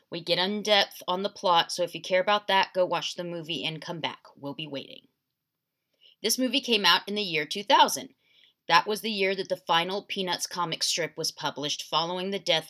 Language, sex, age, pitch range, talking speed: English, female, 20-39, 160-210 Hz, 215 wpm